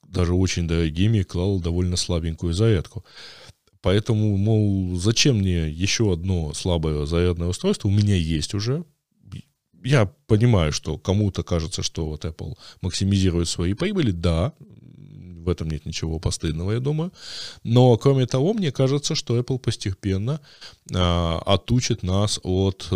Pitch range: 85-115 Hz